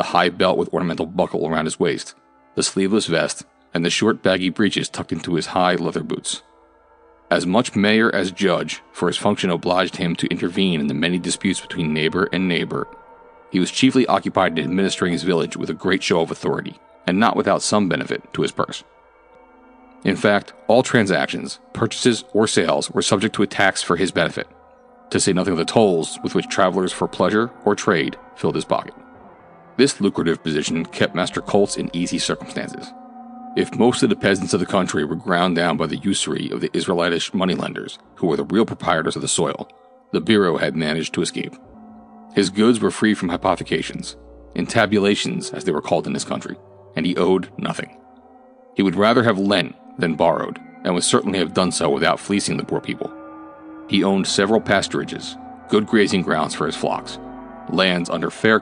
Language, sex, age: English, male, 40-59